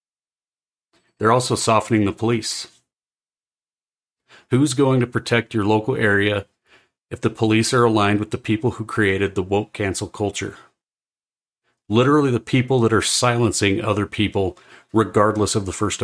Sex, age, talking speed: male, 40-59, 140 wpm